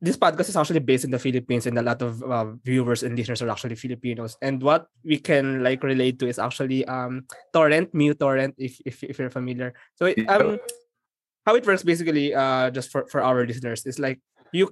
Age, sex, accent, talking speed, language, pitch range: 20-39, male, native, 210 wpm, Filipino, 125-155 Hz